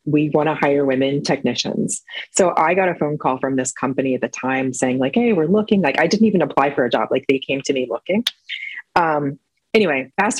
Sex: female